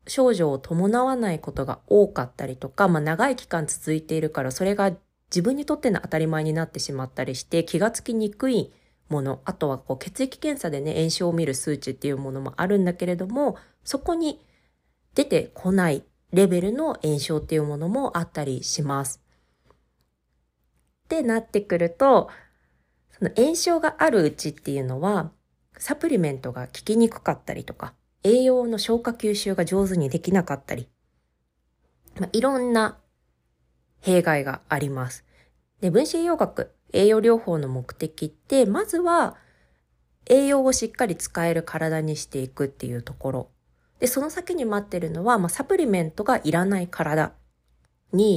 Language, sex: Japanese, female